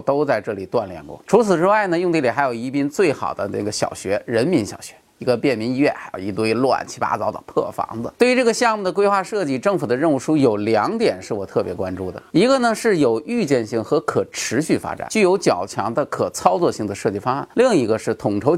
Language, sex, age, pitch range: Chinese, male, 30-49, 130-210 Hz